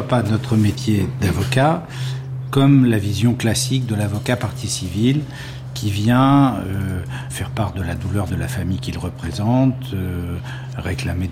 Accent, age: French, 50-69